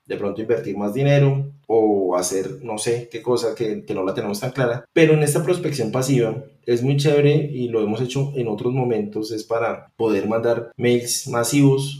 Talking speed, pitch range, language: 195 wpm, 105-130 Hz, Spanish